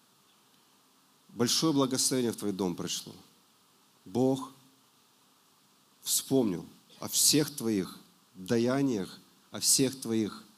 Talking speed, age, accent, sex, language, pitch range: 85 wpm, 40-59, native, male, Russian, 105-130 Hz